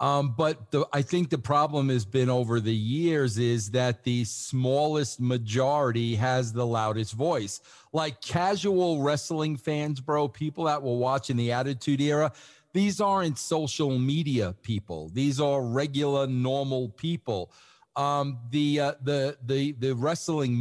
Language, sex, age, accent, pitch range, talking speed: English, male, 50-69, American, 125-155 Hz, 135 wpm